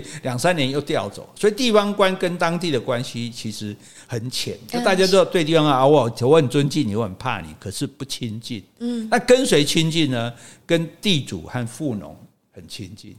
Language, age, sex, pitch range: Chinese, 60-79, male, 115-170 Hz